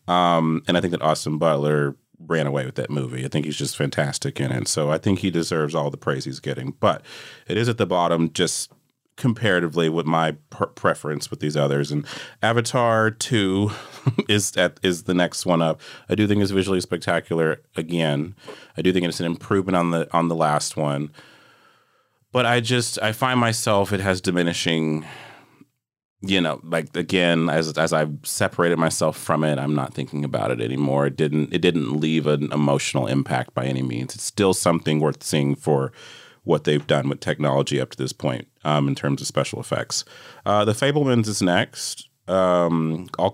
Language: English